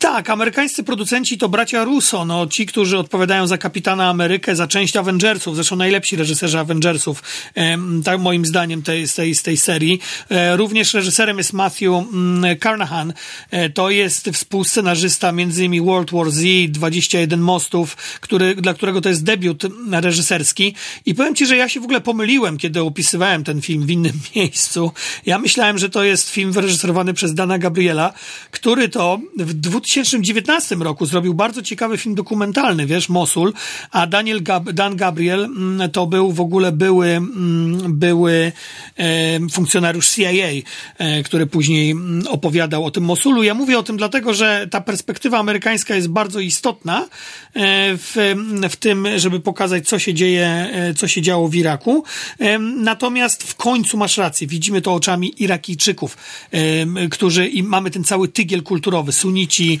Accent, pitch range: native, 170-210 Hz